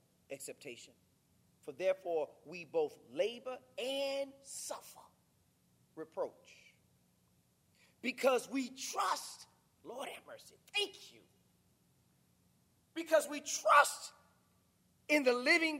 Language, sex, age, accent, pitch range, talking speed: English, male, 40-59, American, 285-395 Hz, 85 wpm